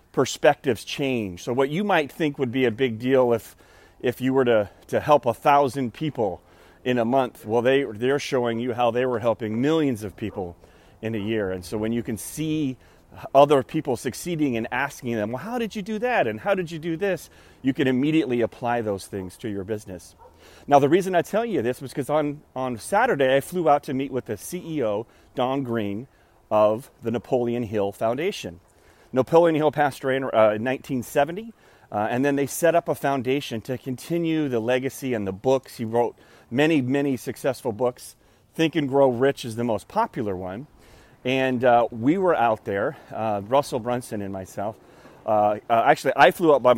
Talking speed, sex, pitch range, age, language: 200 wpm, male, 110-140 Hz, 30-49, English